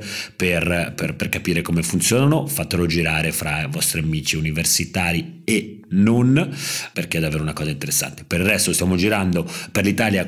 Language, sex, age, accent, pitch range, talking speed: Italian, male, 40-59, native, 85-110 Hz, 165 wpm